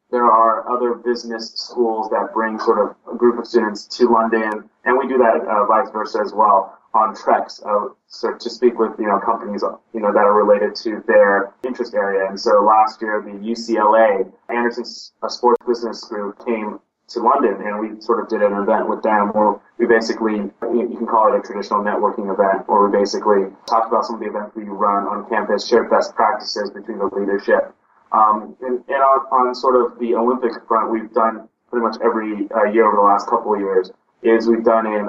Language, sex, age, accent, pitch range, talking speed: English, male, 20-39, American, 105-120 Hz, 210 wpm